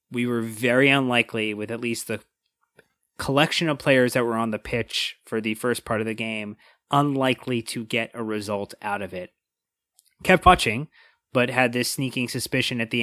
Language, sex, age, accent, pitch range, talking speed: English, male, 30-49, American, 115-130 Hz, 185 wpm